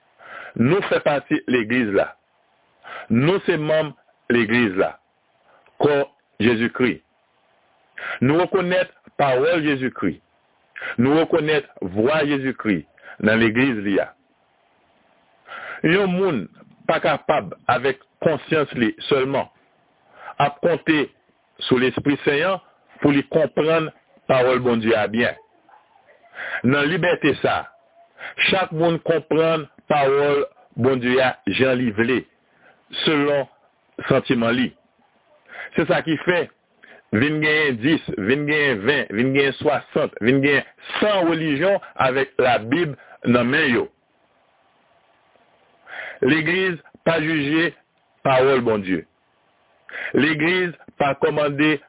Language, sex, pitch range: French, male, 125-165 Hz